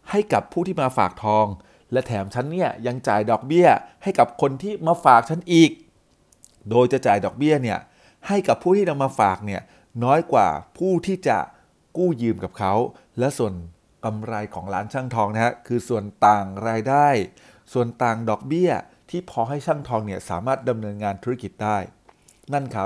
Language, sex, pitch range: Thai, male, 110-145 Hz